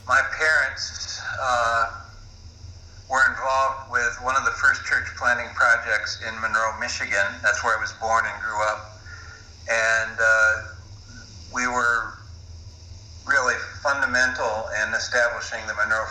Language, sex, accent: English, male, American